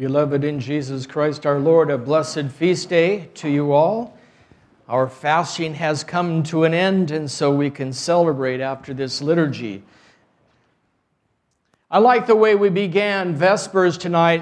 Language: English